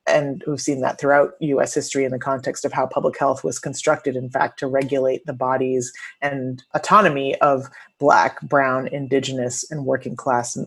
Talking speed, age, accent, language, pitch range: 170 wpm, 30-49, American, English, 135-150 Hz